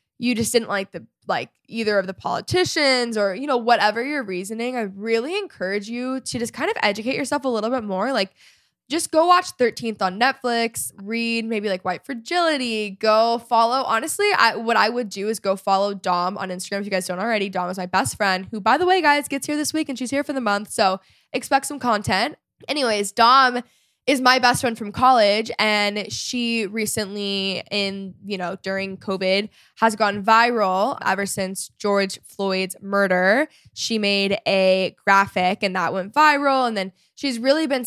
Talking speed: 195 wpm